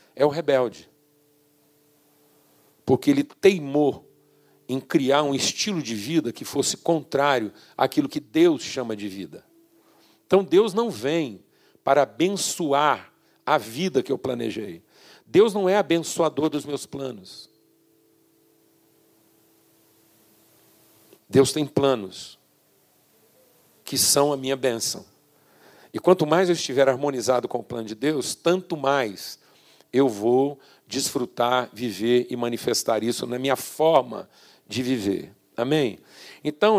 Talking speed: 120 wpm